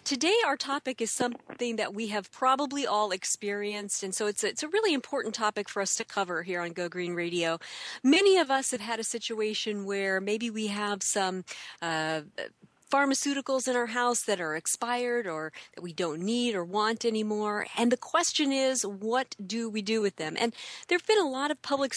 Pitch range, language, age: 195-260 Hz, English, 40-59